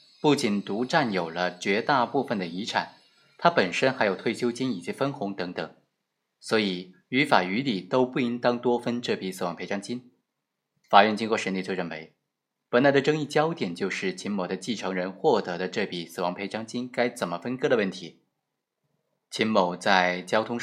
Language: Chinese